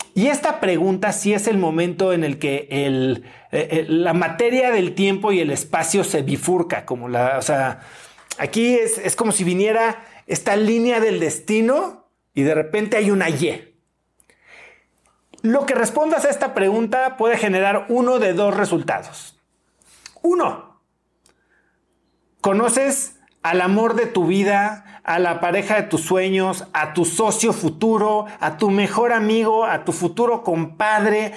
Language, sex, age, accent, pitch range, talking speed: Spanish, male, 40-59, Mexican, 175-230 Hz, 150 wpm